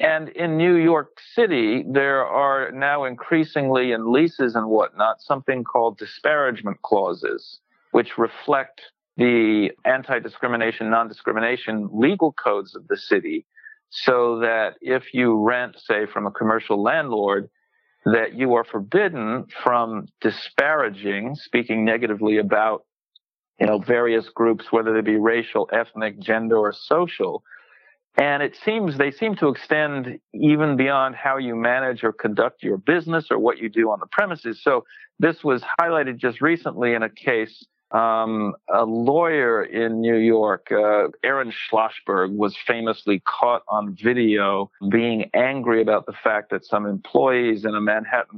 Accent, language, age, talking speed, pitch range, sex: American, English, 50-69, 145 wpm, 110-140 Hz, male